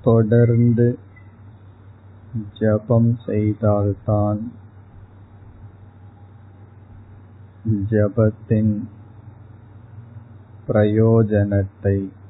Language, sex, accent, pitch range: Tamil, male, native, 100-105 Hz